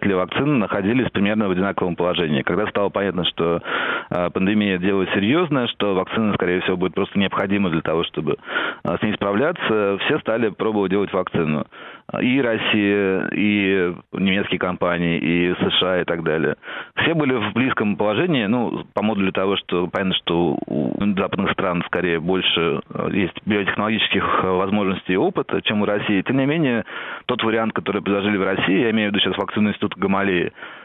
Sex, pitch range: male, 95-110 Hz